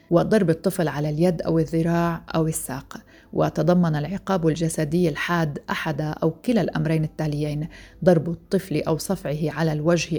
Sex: female